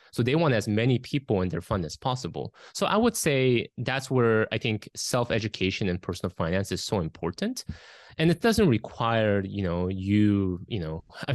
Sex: male